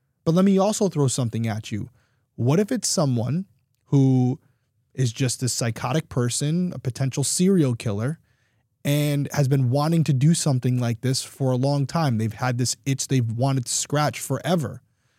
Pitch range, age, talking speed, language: 120-160 Hz, 20-39, 175 wpm, English